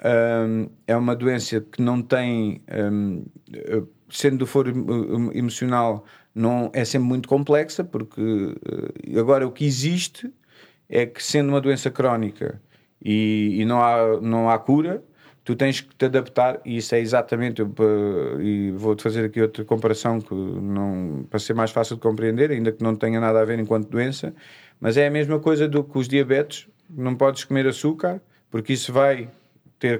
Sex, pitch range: male, 115-150 Hz